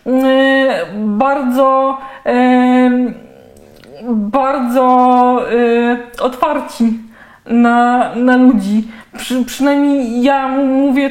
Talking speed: 55 wpm